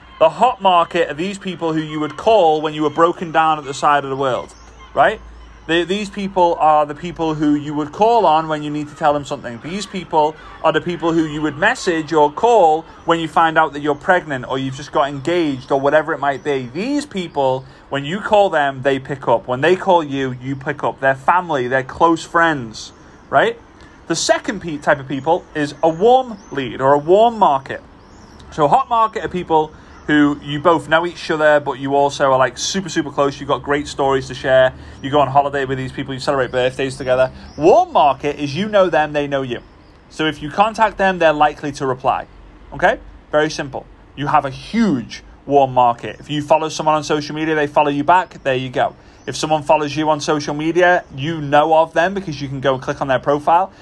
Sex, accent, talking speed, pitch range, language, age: male, British, 220 wpm, 140-170 Hz, English, 30-49